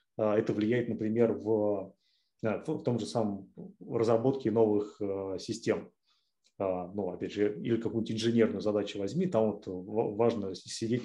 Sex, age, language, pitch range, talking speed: male, 30-49, Russian, 105-135 Hz, 135 wpm